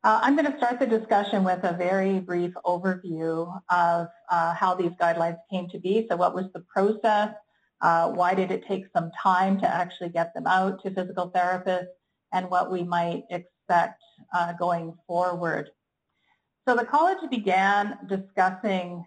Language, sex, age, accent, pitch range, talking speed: English, female, 50-69, American, 175-200 Hz, 165 wpm